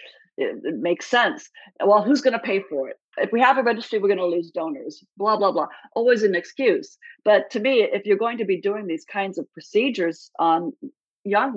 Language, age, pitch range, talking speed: English, 50-69, 175-245 Hz, 215 wpm